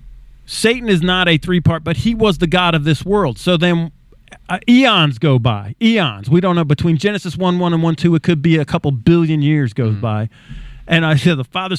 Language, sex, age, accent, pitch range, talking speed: English, male, 40-59, American, 145-185 Hz, 235 wpm